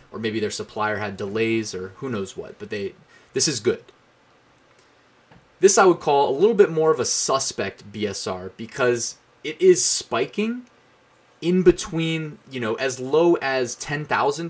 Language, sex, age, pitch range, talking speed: English, male, 20-39, 115-170 Hz, 160 wpm